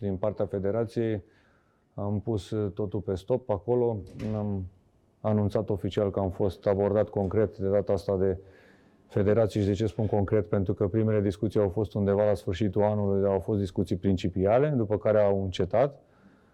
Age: 30-49